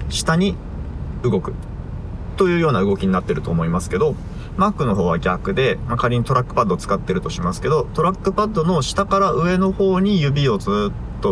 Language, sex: Japanese, male